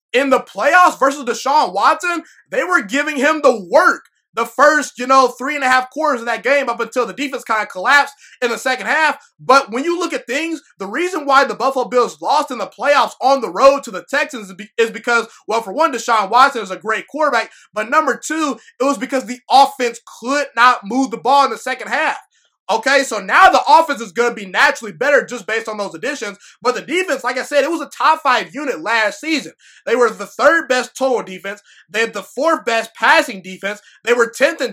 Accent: American